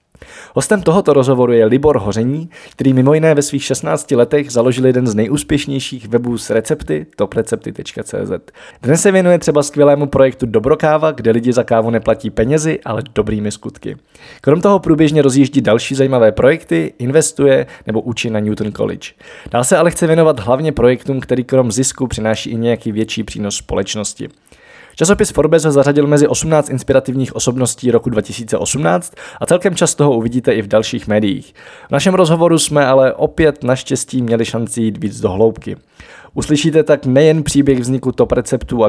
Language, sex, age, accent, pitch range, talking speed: Czech, male, 20-39, native, 115-150 Hz, 160 wpm